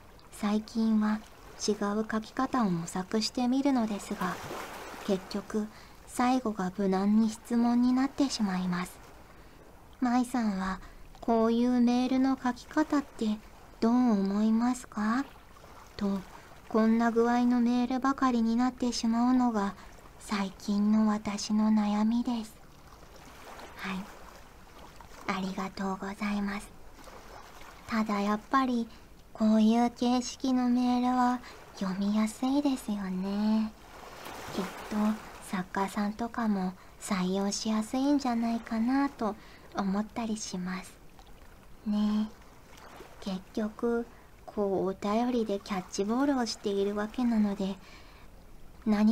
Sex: male